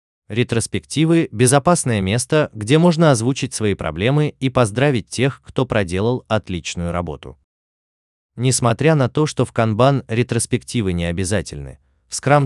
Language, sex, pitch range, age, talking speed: Russian, male, 90-135 Hz, 20-39, 130 wpm